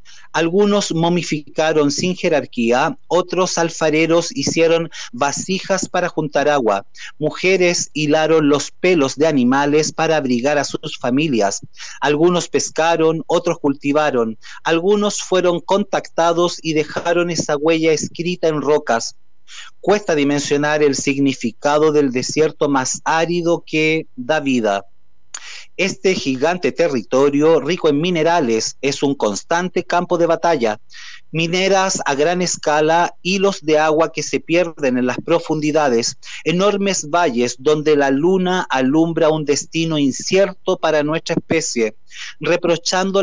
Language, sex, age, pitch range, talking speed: Spanish, male, 40-59, 145-175 Hz, 120 wpm